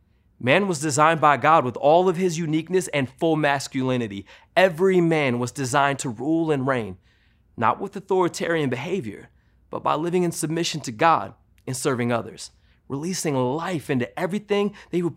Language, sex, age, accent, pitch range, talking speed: English, male, 30-49, American, 125-175 Hz, 165 wpm